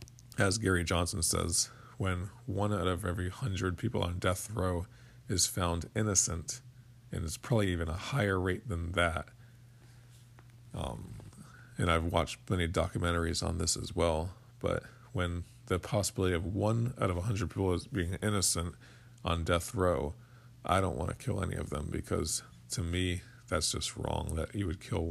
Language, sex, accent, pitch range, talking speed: English, male, American, 85-120 Hz, 170 wpm